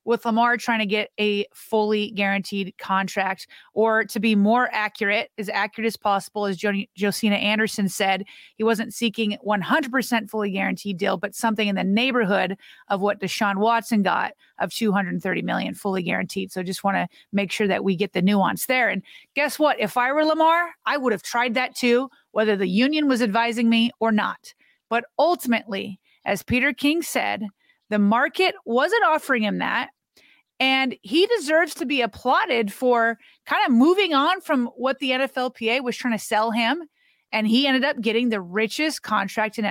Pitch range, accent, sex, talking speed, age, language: 205-255 Hz, American, female, 175 wpm, 30-49, English